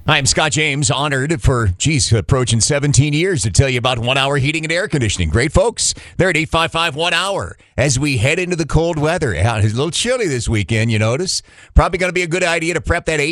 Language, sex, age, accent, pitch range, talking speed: English, male, 40-59, American, 110-145 Hz, 220 wpm